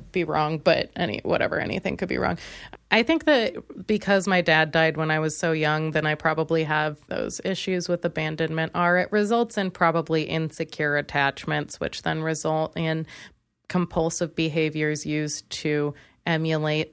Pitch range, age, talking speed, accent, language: 150-185 Hz, 20-39, 160 wpm, American, English